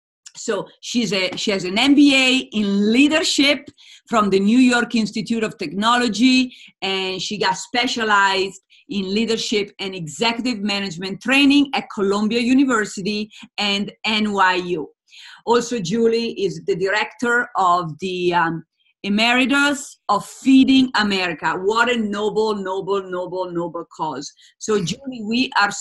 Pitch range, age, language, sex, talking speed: 195-245 Hz, 40-59, English, female, 120 wpm